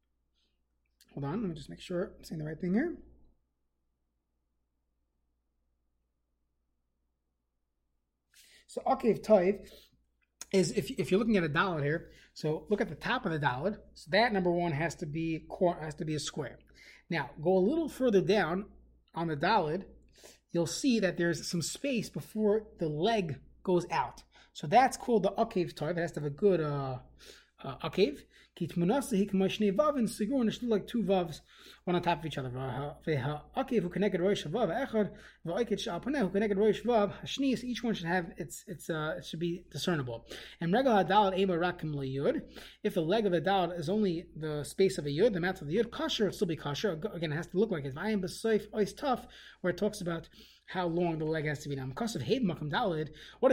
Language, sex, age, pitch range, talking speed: English, male, 30-49, 150-210 Hz, 205 wpm